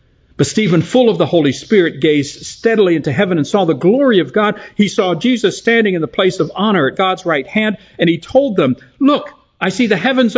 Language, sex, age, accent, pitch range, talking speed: English, male, 50-69, American, 115-190 Hz, 225 wpm